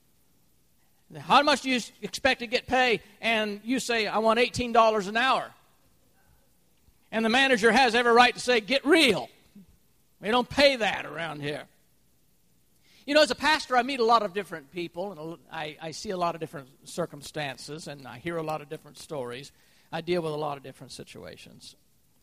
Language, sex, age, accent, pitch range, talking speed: English, male, 50-69, American, 145-220 Hz, 185 wpm